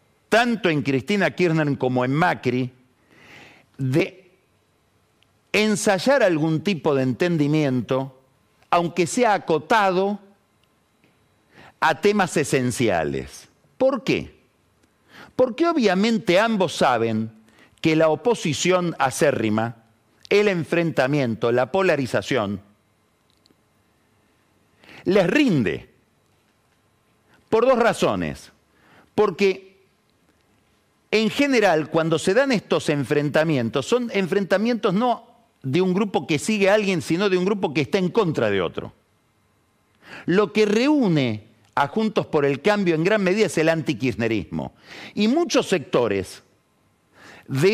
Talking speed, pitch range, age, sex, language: 105 wpm, 125-200 Hz, 50-69, male, Spanish